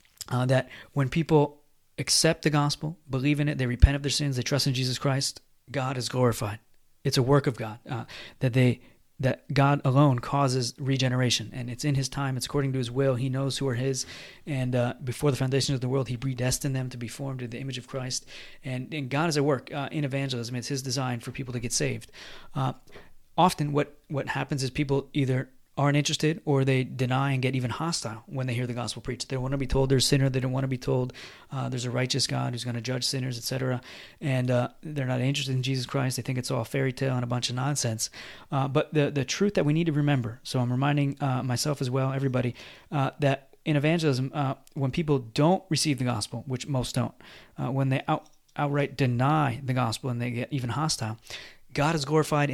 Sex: male